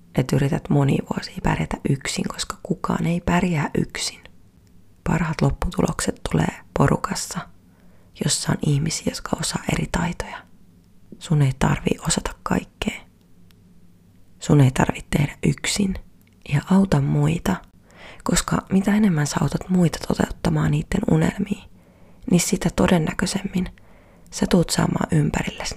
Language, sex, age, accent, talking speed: Finnish, female, 30-49, native, 115 wpm